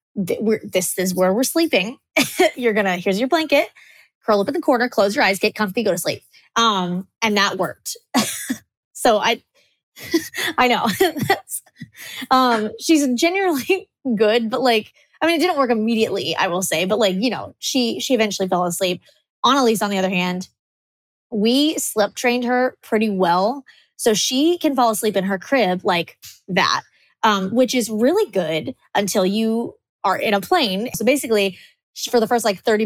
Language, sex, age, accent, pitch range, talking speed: English, female, 20-39, American, 190-245 Hz, 175 wpm